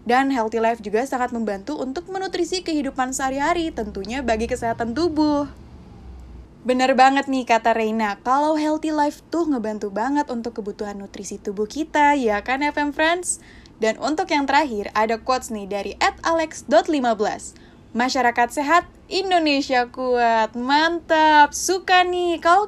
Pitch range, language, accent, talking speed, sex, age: 240-340 Hz, Indonesian, native, 135 wpm, female, 10-29